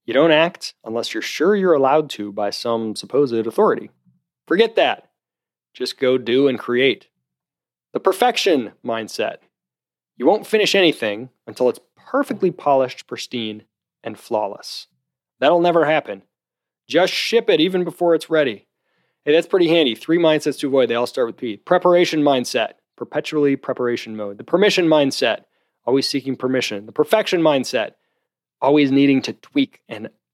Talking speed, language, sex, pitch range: 150 wpm, English, male, 115-180 Hz